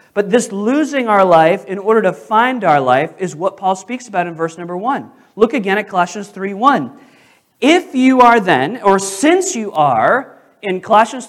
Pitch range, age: 205-275 Hz, 40-59